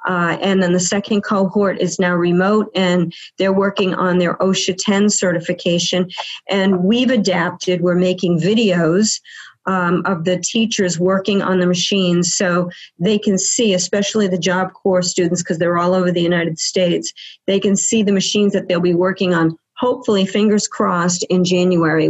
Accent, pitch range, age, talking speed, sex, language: American, 175-205 Hz, 50-69, 170 wpm, female, English